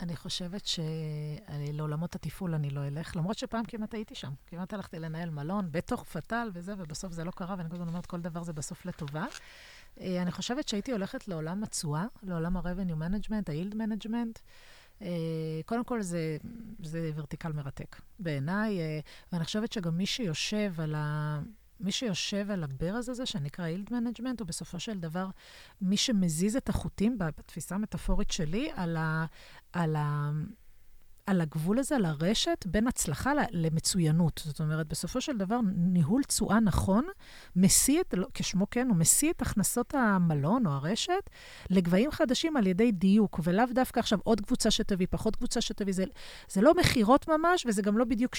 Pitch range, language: 165-230 Hz, Hebrew